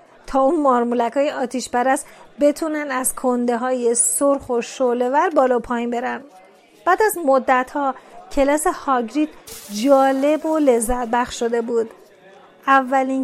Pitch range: 245-310 Hz